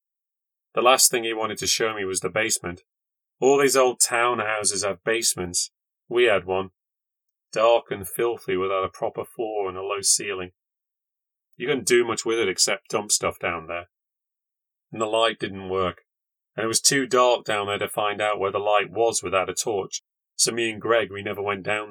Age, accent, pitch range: 30-49, British, 100-125 Hz